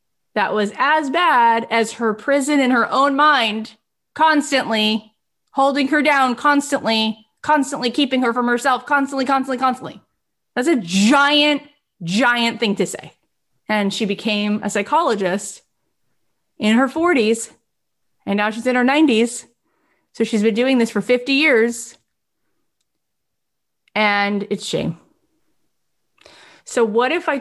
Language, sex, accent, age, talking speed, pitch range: English, female, American, 30-49, 130 wpm, 195-255 Hz